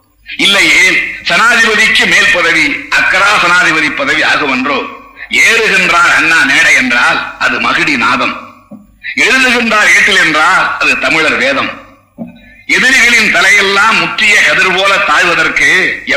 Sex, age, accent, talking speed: male, 60-79, native, 95 wpm